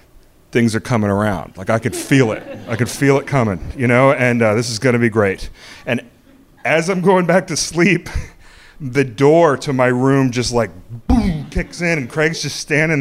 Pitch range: 125-175 Hz